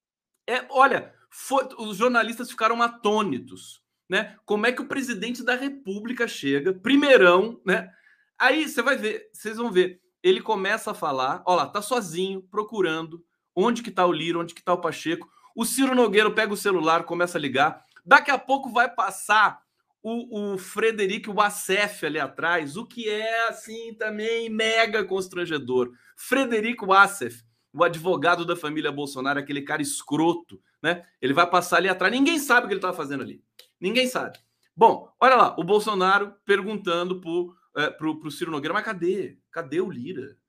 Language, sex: Portuguese, male